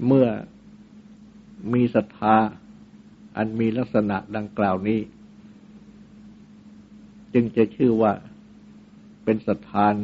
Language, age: Thai, 60-79